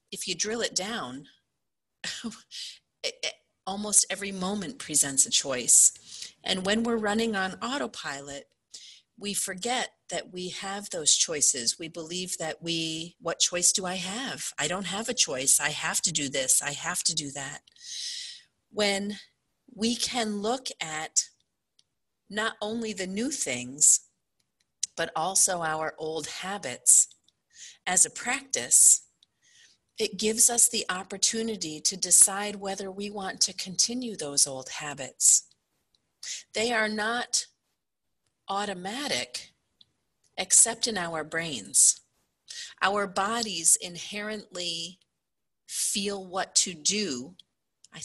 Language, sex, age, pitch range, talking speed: English, female, 40-59, 170-220 Hz, 120 wpm